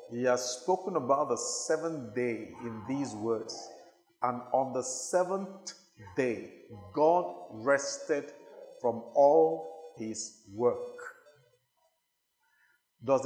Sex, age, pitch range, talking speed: male, 50-69, 125-195 Hz, 100 wpm